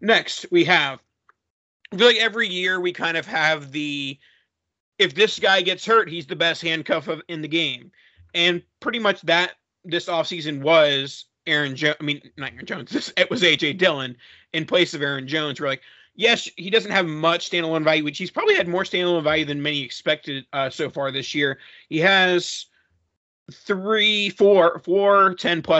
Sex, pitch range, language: male, 140-180 Hz, English